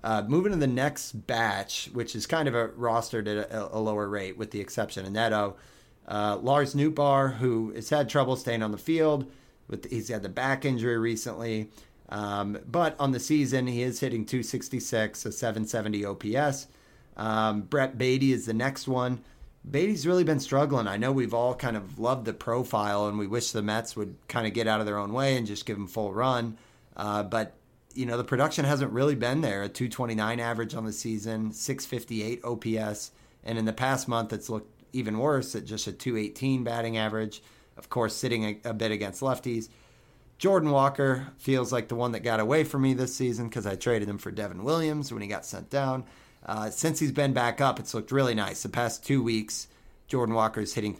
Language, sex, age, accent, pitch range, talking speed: English, male, 30-49, American, 110-130 Hz, 210 wpm